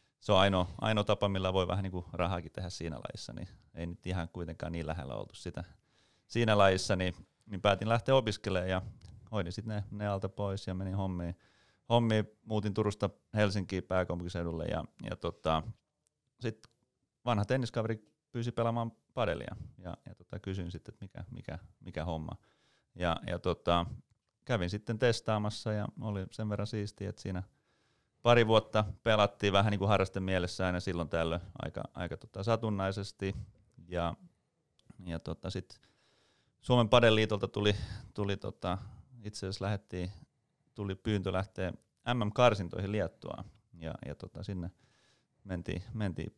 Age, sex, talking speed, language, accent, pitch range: 30-49, male, 150 wpm, Finnish, native, 90-110 Hz